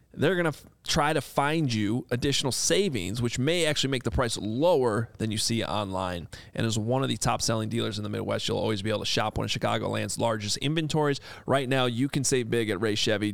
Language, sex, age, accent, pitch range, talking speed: English, male, 30-49, American, 110-150 Hz, 230 wpm